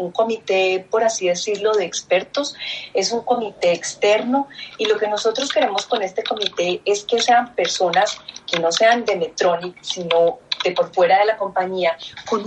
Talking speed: 175 wpm